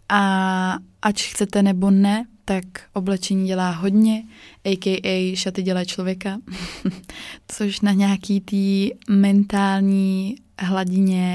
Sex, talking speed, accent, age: female, 95 wpm, native, 20-39